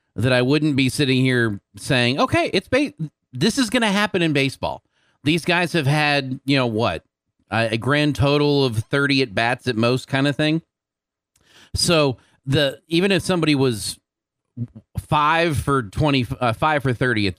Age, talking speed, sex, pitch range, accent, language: 40-59, 175 wpm, male, 110-145 Hz, American, English